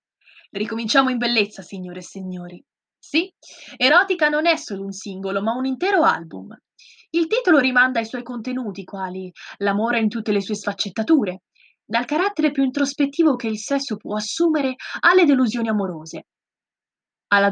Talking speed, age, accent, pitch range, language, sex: 145 wpm, 20-39, native, 205-290 Hz, Italian, female